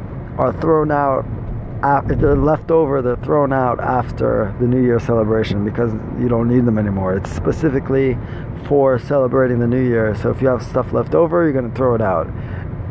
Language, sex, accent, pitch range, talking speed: English, male, American, 110-135 Hz, 185 wpm